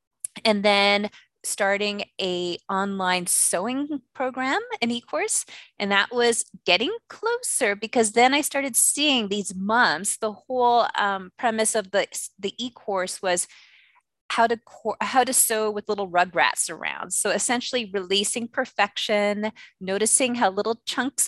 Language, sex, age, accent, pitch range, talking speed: English, female, 20-39, American, 200-245 Hz, 135 wpm